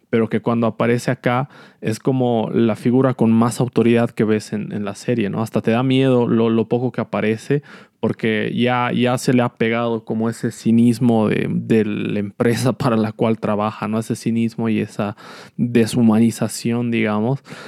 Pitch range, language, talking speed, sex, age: 115-130 Hz, Spanish, 180 wpm, male, 20-39